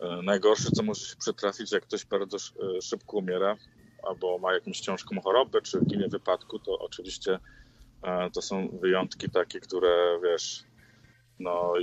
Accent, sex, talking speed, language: native, male, 135 wpm, Polish